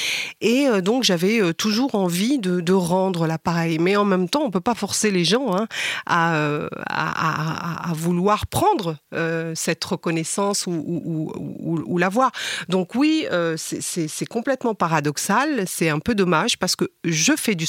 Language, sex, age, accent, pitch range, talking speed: French, female, 40-59, French, 160-200 Hz, 180 wpm